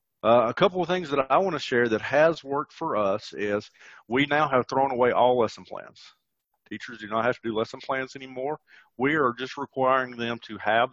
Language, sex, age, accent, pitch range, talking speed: English, male, 40-59, American, 110-140 Hz, 220 wpm